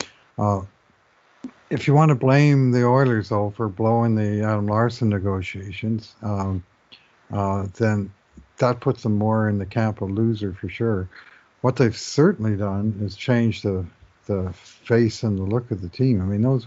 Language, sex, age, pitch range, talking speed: English, male, 50-69, 100-120 Hz, 170 wpm